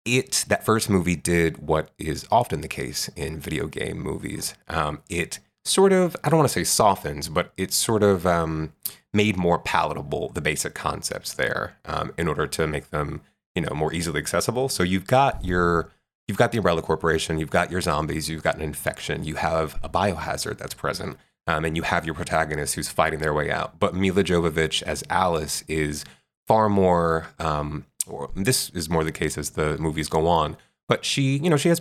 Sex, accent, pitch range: male, American, 80-100 Hz